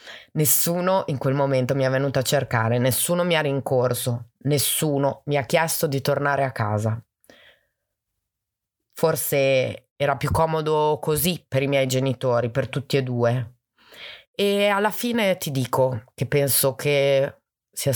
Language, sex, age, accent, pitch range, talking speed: Italian, female, 30-49, native, 120-145 Hz, 145 wpm